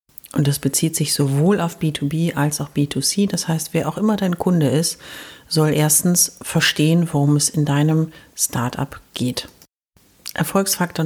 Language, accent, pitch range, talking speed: German, German, 140-170 Hz, 150 wpm